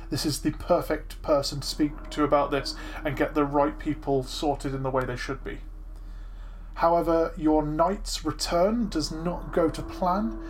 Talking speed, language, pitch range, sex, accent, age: 175 wpm, English, 145-170 Hz, male, British, 20-39